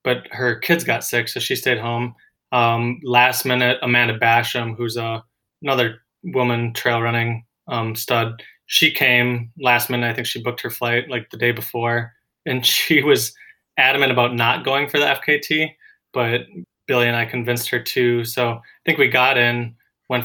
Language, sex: English, male